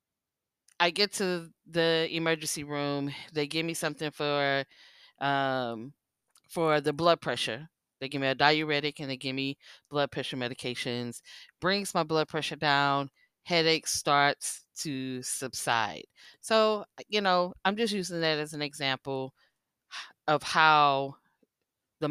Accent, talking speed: American, 135 wpm